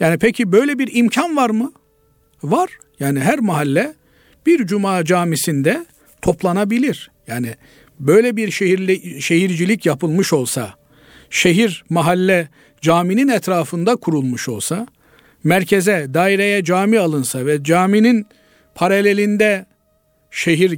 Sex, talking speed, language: male, 105 wpm, Turkish